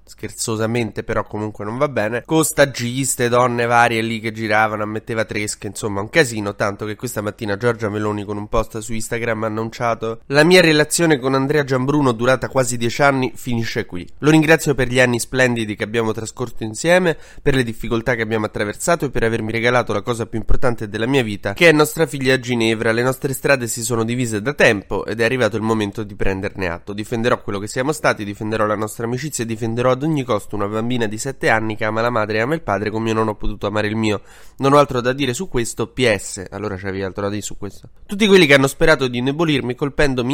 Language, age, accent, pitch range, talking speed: Italian, 20-39, native, 110-130 Hz, 220 wpm